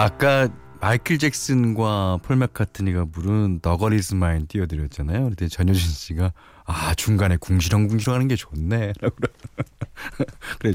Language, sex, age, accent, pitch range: Korean, male, 40-59, native, 90-130 Hz